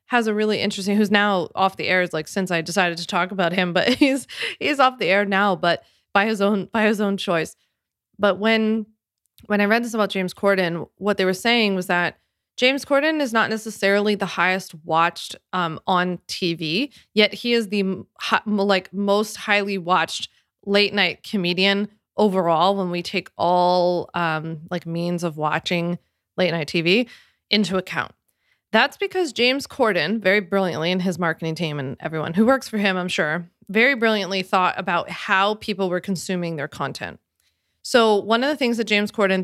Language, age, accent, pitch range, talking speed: English, 20-39, American, 175-210 Hz, 185 wpm